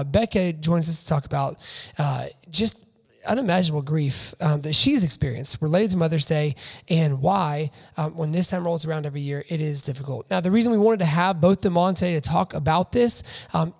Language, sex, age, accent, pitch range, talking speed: English, male, 20-39, American, 145-185 Hz, 205 wpm